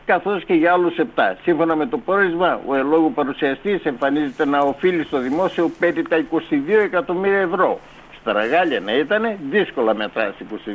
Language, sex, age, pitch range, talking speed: Greek, male, 60-79, 155-215 Hz, 160 wpm